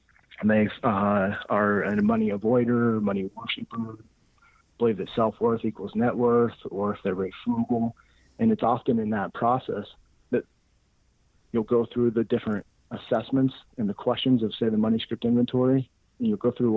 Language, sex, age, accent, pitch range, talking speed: English, male, 40-59, American, 105-120 Hz, 170 wpm